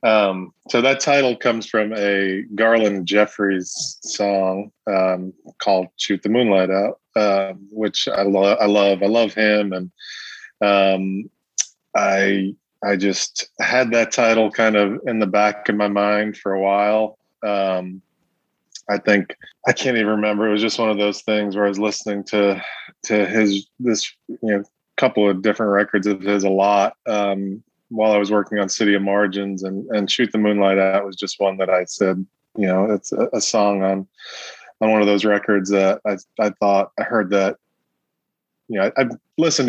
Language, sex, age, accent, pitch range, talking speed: English, male, 20-39, American, 100-110 Hz, 185 wpm